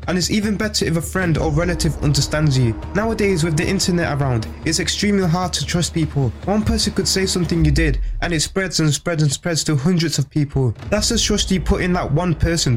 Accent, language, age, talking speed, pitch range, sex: British, English, 20-39, 230 wpm, 145-185 Hz, male